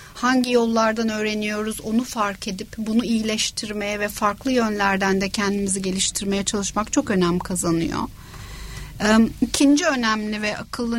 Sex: female